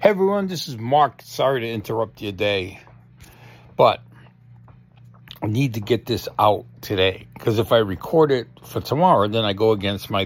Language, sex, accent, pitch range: English, male, American, 95-125 Hz